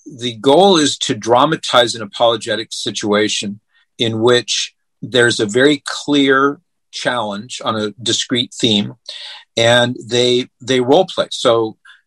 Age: 50-69